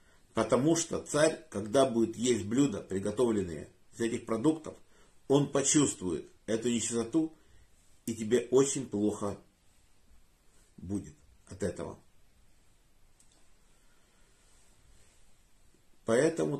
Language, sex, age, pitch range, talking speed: Russian, male, 50-69, 100-140 Hz, 85 wpm